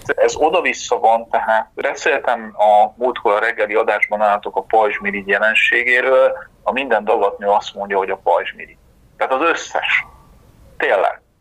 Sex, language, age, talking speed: male, Hungarian, 40-59, 135 wpm